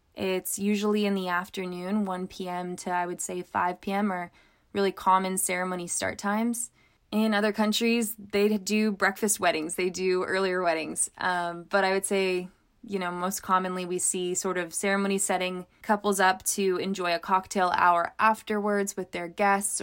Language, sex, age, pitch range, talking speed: English, female, 20-39, 180-210 Hz, 170 wpm